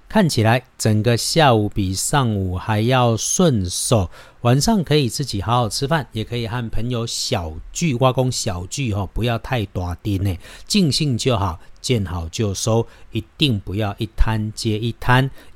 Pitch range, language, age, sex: 105-135 Hz, Chinese, 50-69, male